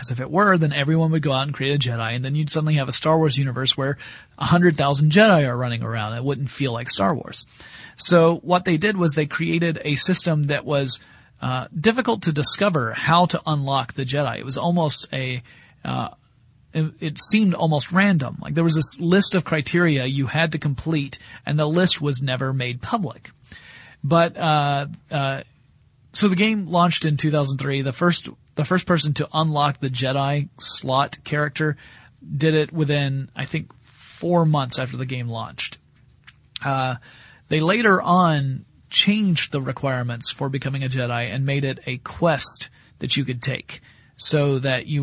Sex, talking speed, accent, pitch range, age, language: male, 185 wpm, American, 130-165 Hz, 30-49, English